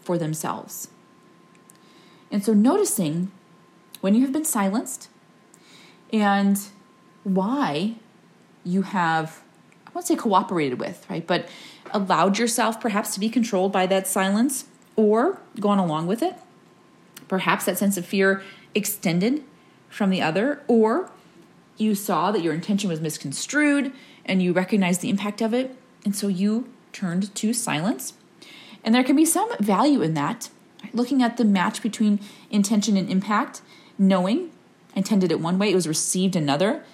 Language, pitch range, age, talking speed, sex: English, 185-230 Hz, 30-49, 145 wpm, female